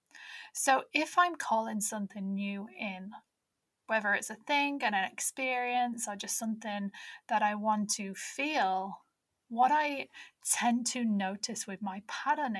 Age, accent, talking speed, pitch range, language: 10-29, British, 145 wpm, 205-265 Hz, English